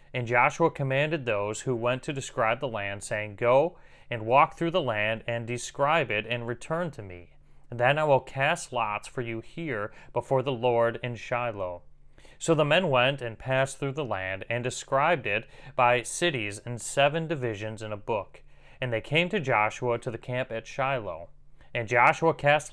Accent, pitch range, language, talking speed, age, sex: American, 115-140 Hz, English, 185 wpm, 30-49, male